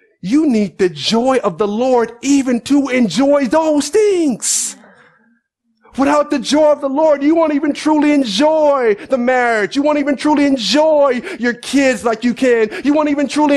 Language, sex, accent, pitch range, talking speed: English, male, American, 200-270 Hz, 175 wpm